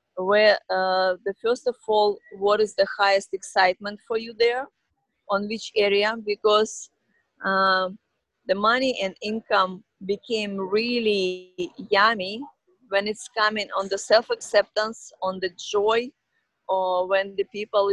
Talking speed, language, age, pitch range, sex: 135 wpm, English, 30-49, 190-220 Hz, female